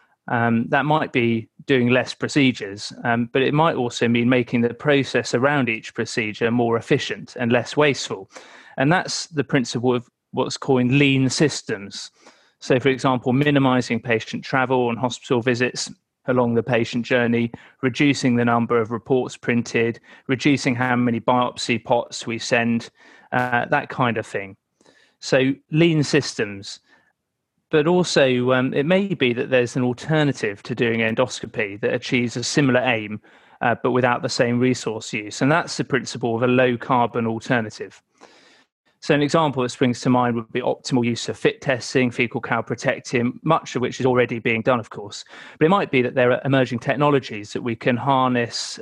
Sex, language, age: male, English, 30-49